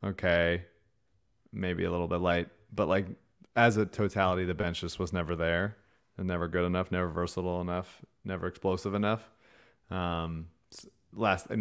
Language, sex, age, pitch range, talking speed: English, male, 30-49, 90-105 Hz, 165 wpm